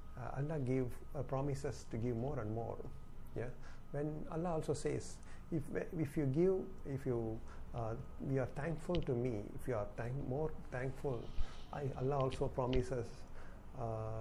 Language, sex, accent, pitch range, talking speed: Tamil, male, native, 115-135 Hz, 160 wpm